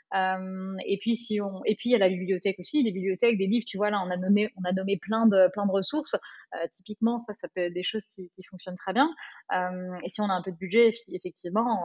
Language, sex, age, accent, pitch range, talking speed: French, female, 30-49, French, 185-225 Hz, 275 wpm